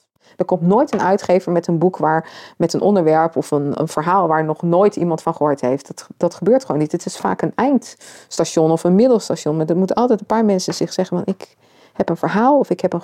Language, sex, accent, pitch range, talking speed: English, female, Dutch, 175-230 Hz, 245 wpm